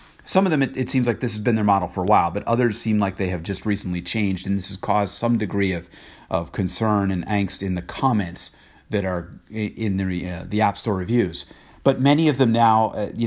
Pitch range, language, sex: 90-110 Hz, English, male